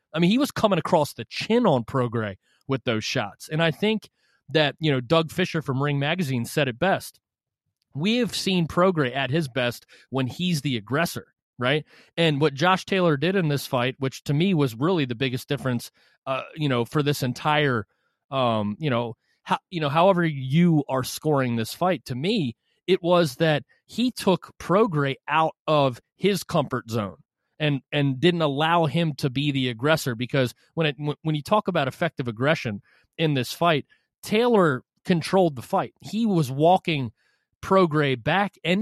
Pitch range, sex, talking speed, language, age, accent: 135-175 Hz, male, 180 wpm, English, 30-49, American